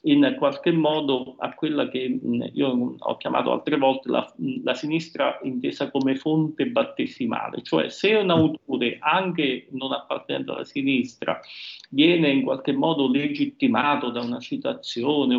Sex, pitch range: male, 125-180 Hz